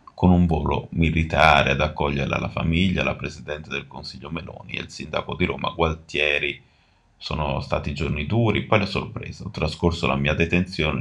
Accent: native